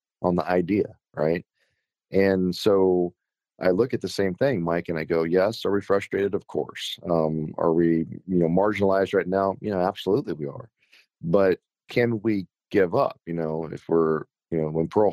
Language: English